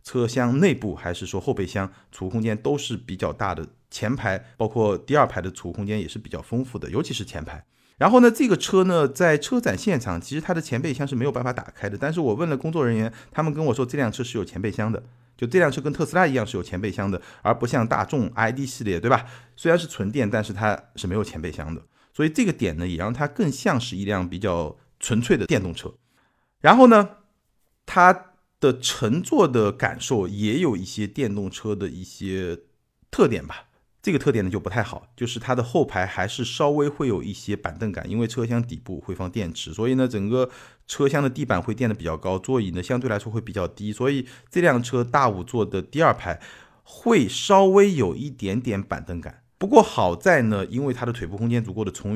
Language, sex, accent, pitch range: Chinese, male, native, 100-135 Hz